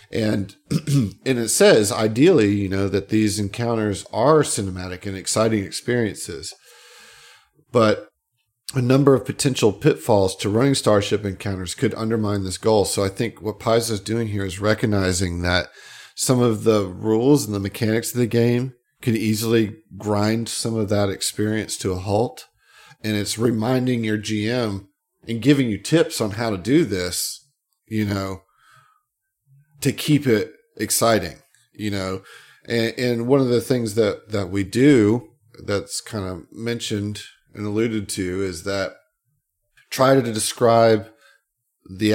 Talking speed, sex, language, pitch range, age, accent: 150 wpm, male, English, 100-115 Hz, 40-59, American